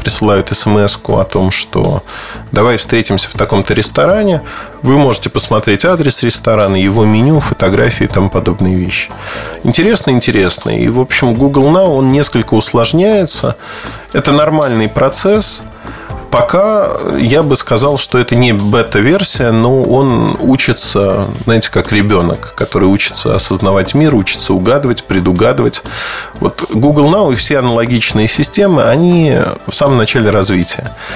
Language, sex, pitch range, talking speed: Russian, male, 105-140 Hz, 130 wpm